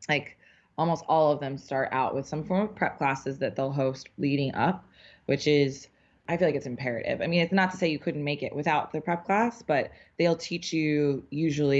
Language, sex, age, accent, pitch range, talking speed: English, female, 20-39, American, 135-155 Hz, 225 wpm